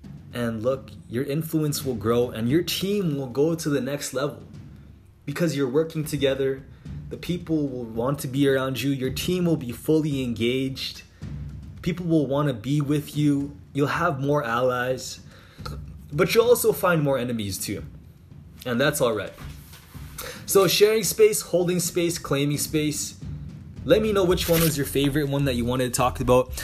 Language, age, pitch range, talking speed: English, 20-39, 125-155 Hz, 170 wpm